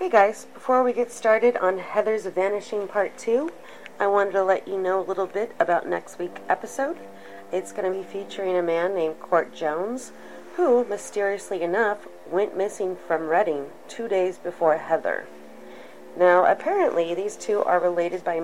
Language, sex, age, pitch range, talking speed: English, female, 30-49, 160-210 Hz, 170 wpm